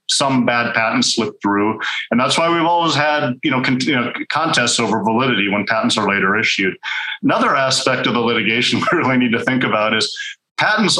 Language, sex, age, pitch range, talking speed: English, male, 40-59, 115-135 Hz, 200 wpm